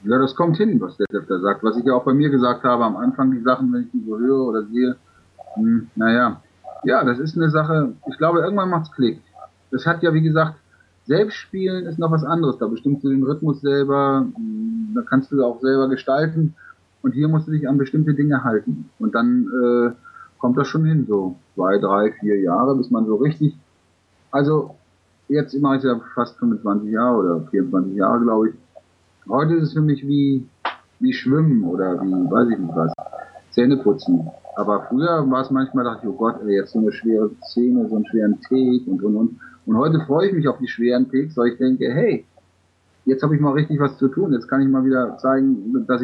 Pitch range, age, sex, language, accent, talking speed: 115-155 Hz, 30-49, male, German, German, 220 wpm